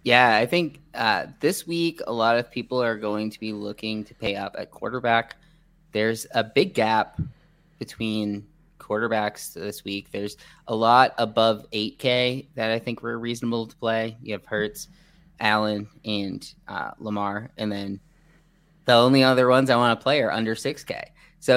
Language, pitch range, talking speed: English, 110-140 Hz, 170 wpm